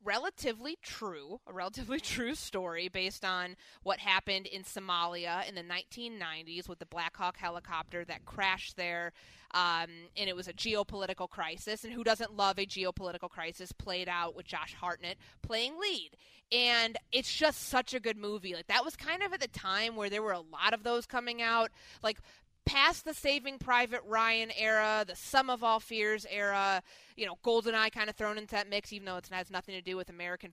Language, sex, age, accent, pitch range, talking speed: English, female, 20-39, American, 180-225 Hz, 195 wpm